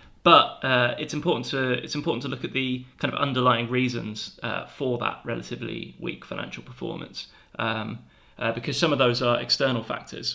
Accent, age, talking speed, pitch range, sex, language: British, 20-39, 180 wpm, 110-130 Hz, male, English